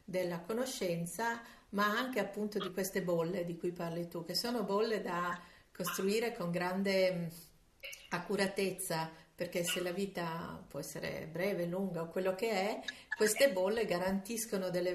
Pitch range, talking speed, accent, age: 175-205 Hz, 145 wpm, native, 50-69